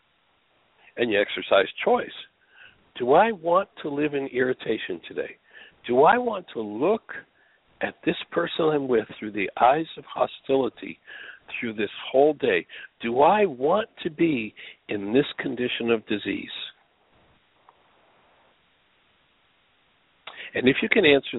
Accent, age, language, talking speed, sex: American, 60-79, English, 130 wpm, male